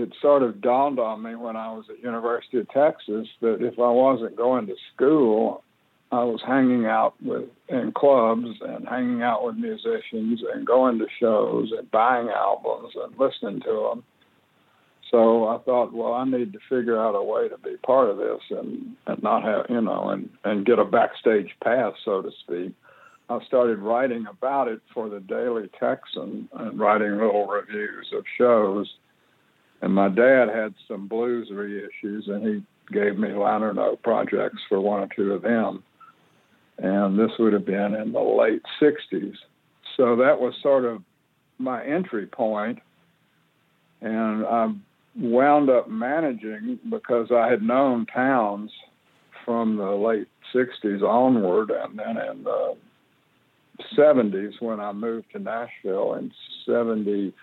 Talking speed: 160 wpm